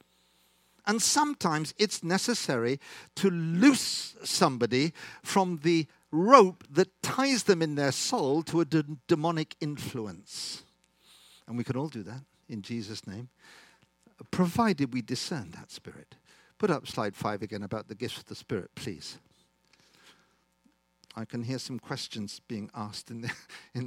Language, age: English, 50-69